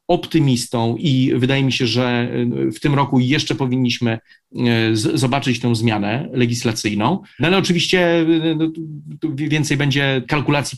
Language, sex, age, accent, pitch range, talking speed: Polish, male, 40-59, native, 120-140 Hz, 135 wpm